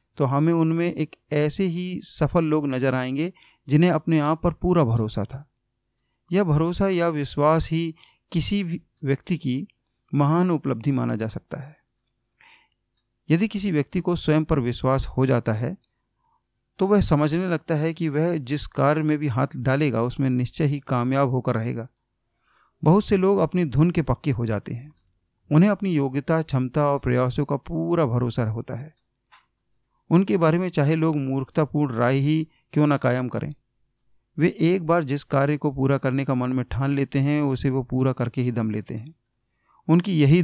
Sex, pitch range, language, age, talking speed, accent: male, 125-160 Hz, Hindi, 40-59, 175 wpm, native